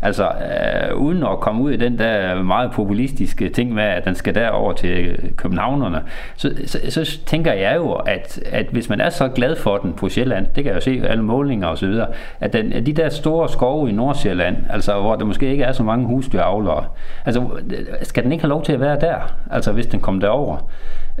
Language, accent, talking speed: Danish, native, 225 wpm